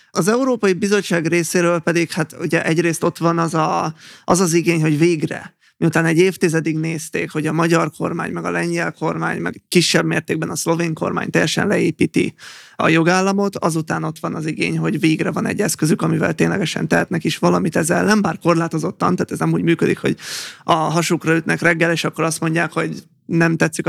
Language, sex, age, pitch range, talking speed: Hungarian, male, 20-39, 160-170 Hz, 190 wpm